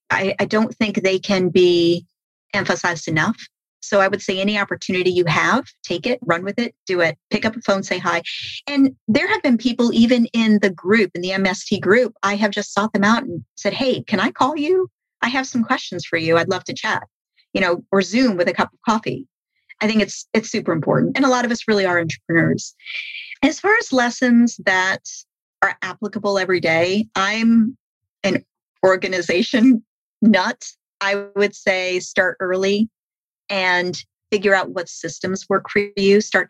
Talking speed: 190 wpm